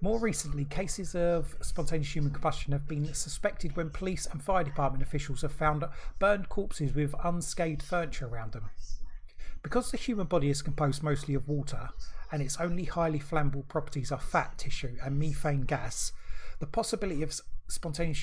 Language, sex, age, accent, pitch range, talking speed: English, male, 30-49, British, 140-175 Hz, 165 wpm